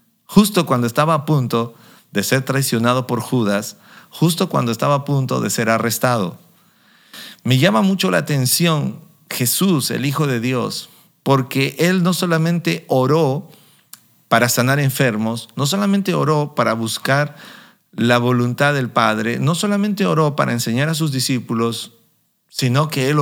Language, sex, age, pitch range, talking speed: Spanish, male, 50-69, 125-165 Hz, 145 wpm